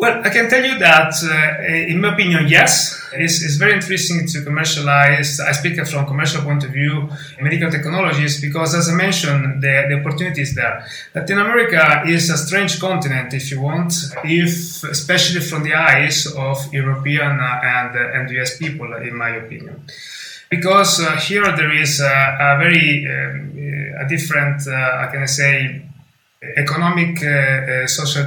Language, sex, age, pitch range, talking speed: English, male, 30-49, 135-160 Hz, 170 wpm